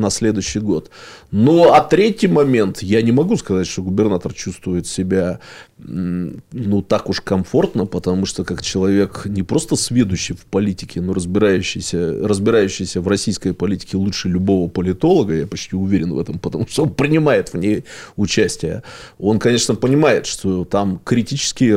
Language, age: Russian, 20-39